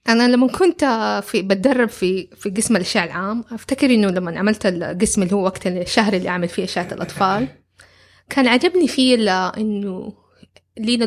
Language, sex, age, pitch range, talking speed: Arabic, female, 20-39, 185-215 Hz, 155 wpm